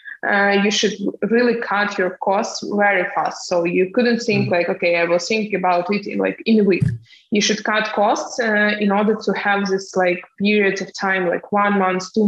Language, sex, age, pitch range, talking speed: English, female, 20-39, 185-210 Hz, 210 wpm